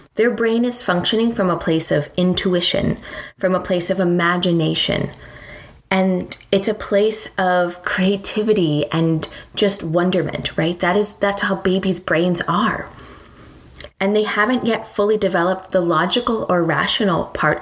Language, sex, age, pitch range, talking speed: English, female, 20-39, 170-205 Hz, 145 wpm